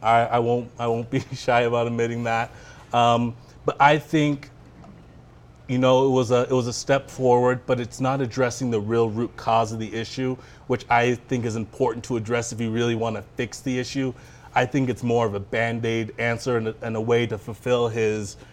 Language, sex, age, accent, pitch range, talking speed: English, male, 30-49, American, 115-130 Hz, 215 wpm